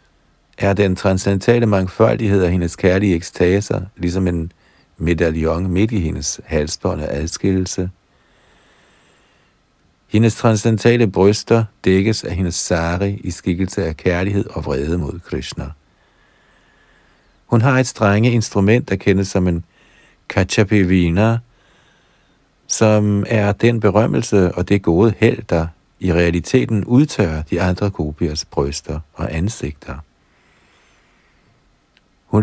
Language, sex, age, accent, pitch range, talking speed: Danish, male, 50-69, German, 85-105 Hz, 115 wpm